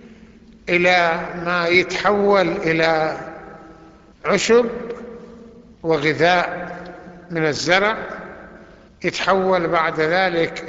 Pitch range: 170-205 Hz